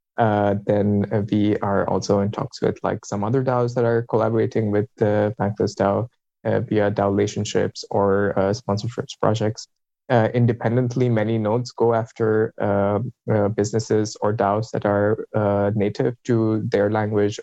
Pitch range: 100-115 Hz